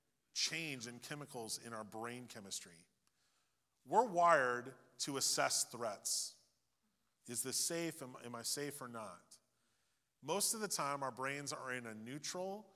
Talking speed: 145 wpm